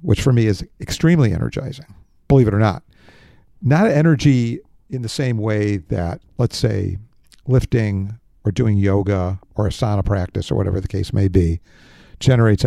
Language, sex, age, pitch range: English, male, 50-69, 100-135 Hz